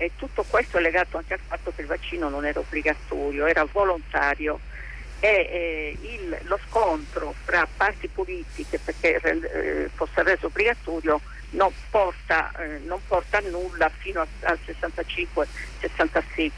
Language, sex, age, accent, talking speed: Italian, female, 50-69, native, 135 wpm